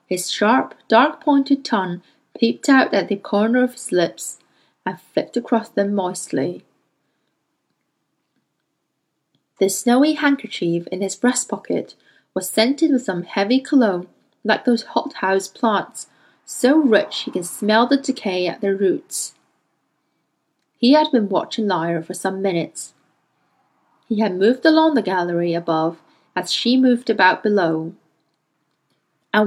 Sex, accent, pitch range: female, British, 175-240 Hz